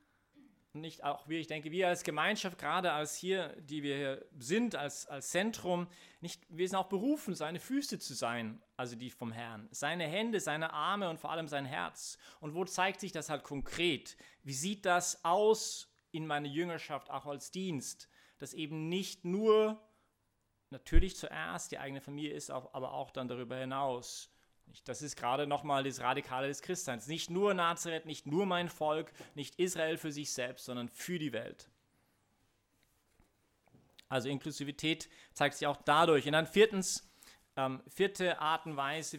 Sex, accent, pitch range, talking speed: male, German, 135-180 Hz, 170 wpm